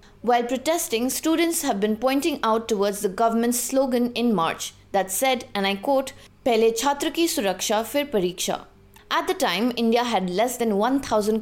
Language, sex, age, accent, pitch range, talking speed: English, female, 20-39, Indian, 205-270 Hz, 160 wpm